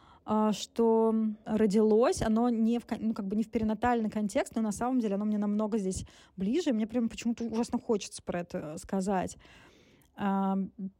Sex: female